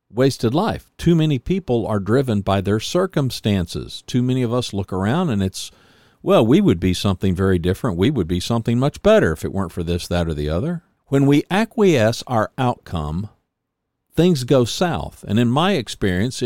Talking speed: 190 wpm